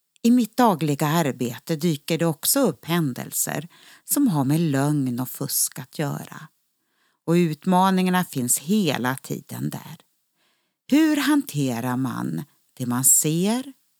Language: Swedish